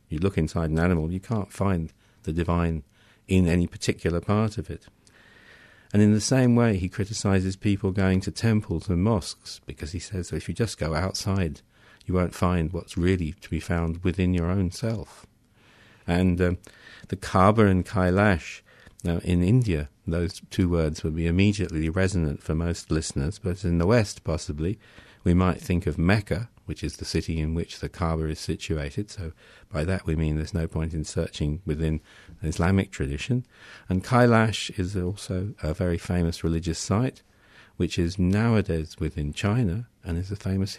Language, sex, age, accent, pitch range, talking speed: English, male, 50-69, British, 85-105 Hz, 175 wpm